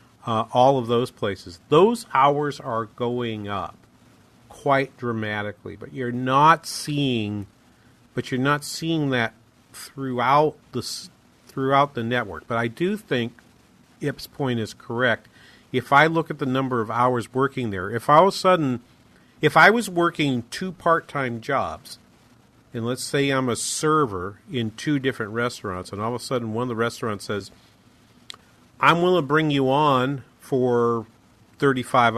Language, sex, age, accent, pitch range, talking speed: English, male, 40-59, American, 115-145 Hz, 155 wpm